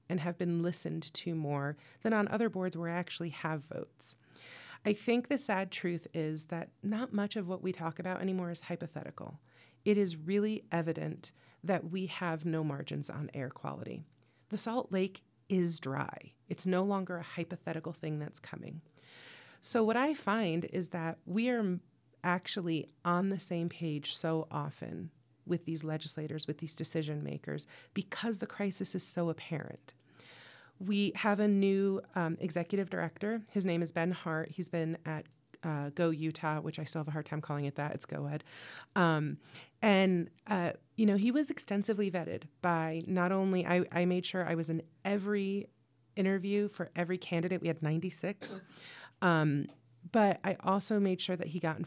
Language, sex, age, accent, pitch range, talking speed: English, female, 40-59, American, 155-190 Hz, 175 wpm